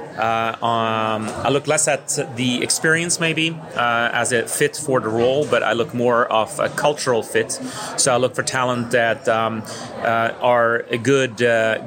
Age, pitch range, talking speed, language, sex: 30-49, 115-145 Hz, 180 wpm, English, male